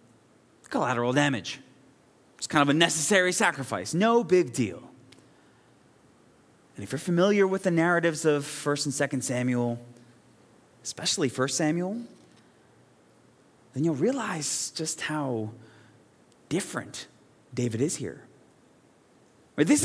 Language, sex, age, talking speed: English, male, 30-49, 110 wpm